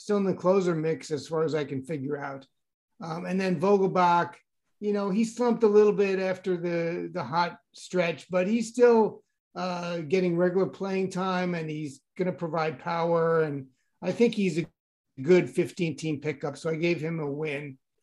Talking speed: 185 wpm